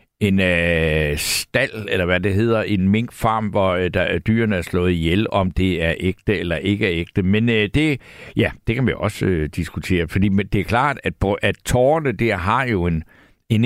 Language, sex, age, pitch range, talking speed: Danish, male, 60-79, 100-135 Hz, 170 wpm